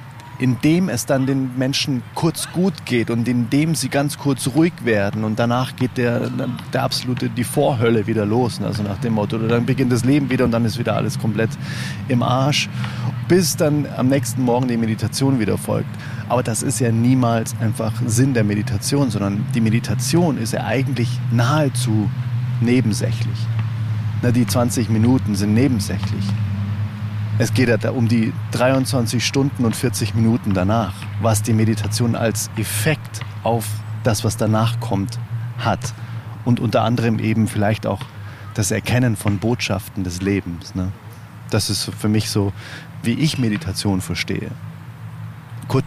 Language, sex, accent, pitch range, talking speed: German, male, German, 110-130 Hz, 155 wpm